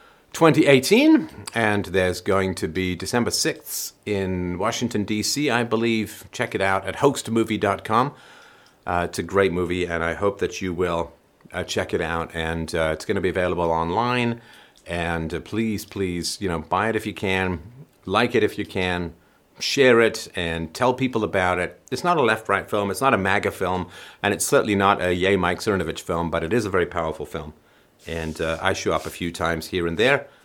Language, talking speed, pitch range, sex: English, 195 wpm, 85-120 Hz, male